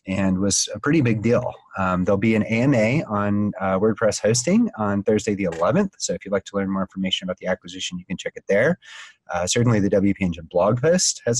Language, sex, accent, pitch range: English, male, American, 95-125 Hz